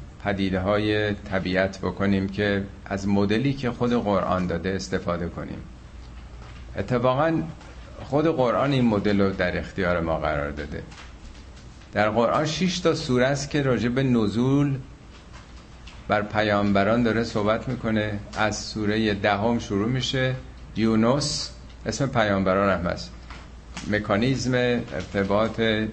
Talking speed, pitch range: 120 wpm, 85-115 Hz